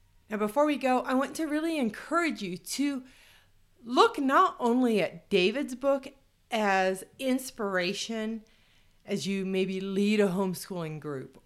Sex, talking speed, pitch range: female, 135 wpm, 170-225 Hz